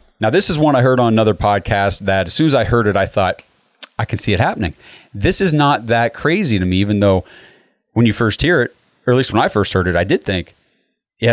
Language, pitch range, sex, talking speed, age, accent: English, 100-130 Hz, male, 260 wpm, 30-49, American